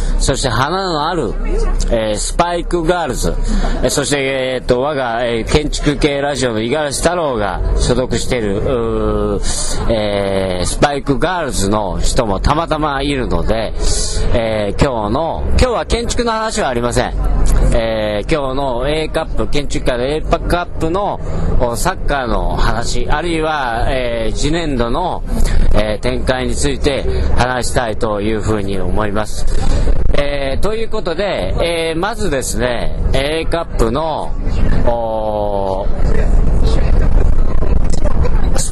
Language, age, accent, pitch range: Japanese, 40-59, native, 100-155 Hz